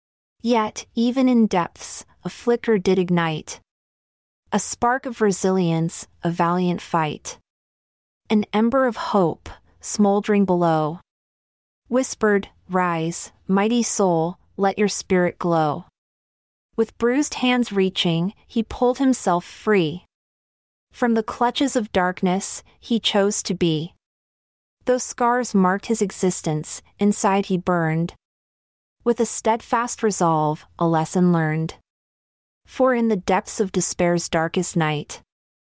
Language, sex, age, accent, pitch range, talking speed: English, female, 30-49, American, 170-220 Hz, 115 wpm